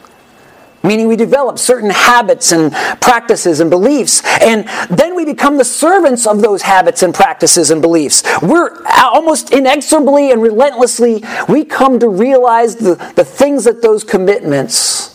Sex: male